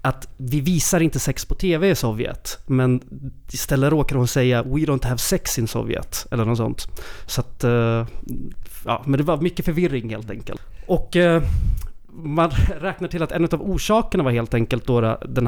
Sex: male